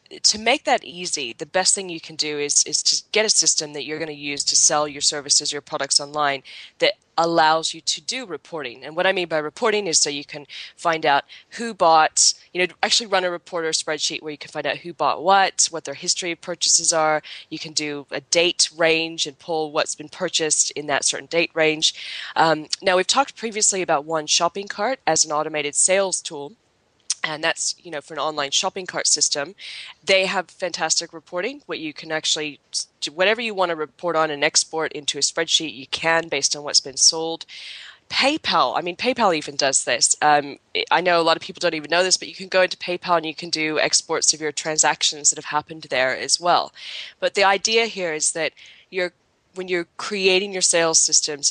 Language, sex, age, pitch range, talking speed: English, female, 20-39, 150-180 Hz, 220 wpm